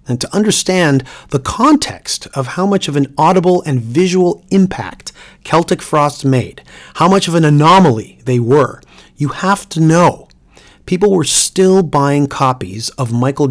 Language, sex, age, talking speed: English, male, 40-59, 155 wpm